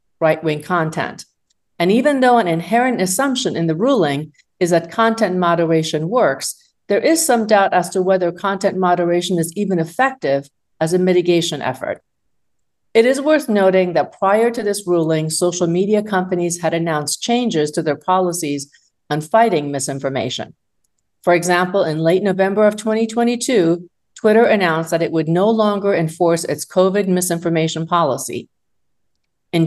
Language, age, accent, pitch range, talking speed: English, 50-69, American, 165-205 Hz, 150 wpm